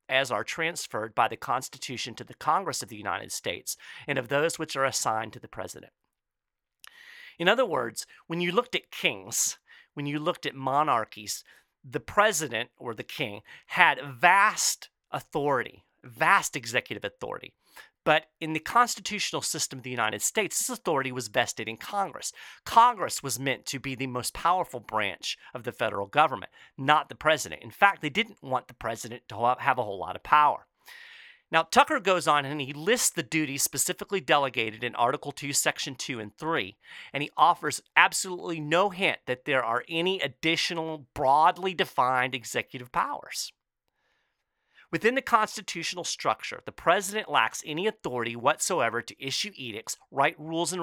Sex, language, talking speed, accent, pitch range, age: male, English, 165 wpm, American, 125-185 Hz, 40-59